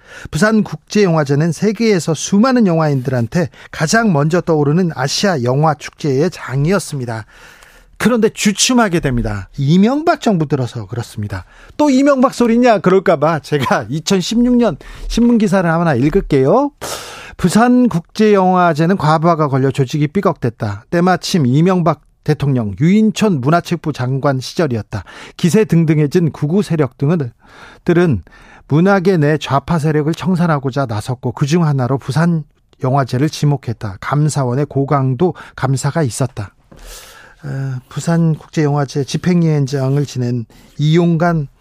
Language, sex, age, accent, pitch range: Korean, male, 40-59, native, 135-180 Hz